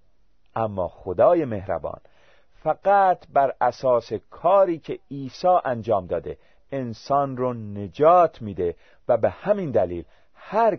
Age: 40-59